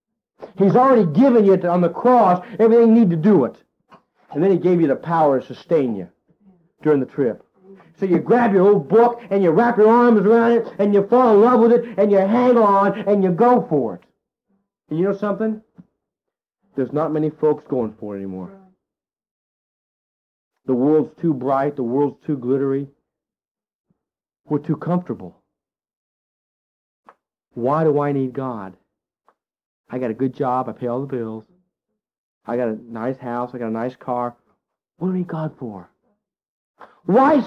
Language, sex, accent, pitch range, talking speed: English, male, American, 145-230 Hz, 175 wpm